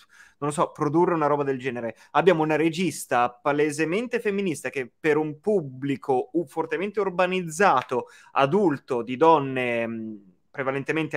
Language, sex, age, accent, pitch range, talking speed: Italian, male, 20-39, native, 145-190 Hz, 120 wpm